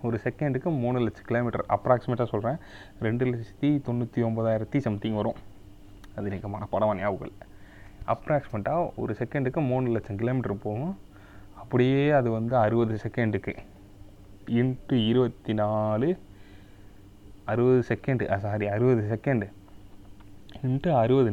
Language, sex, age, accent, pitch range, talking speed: Tamil, male, 20-39, native, 100-125 Hz, 100 wpm